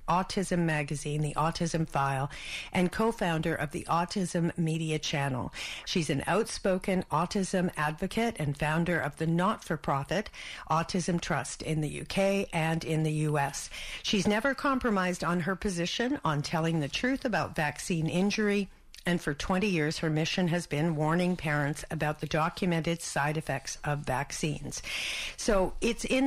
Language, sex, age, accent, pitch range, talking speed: English, female, 50-69, American, 155-190 Hz, 145 wpm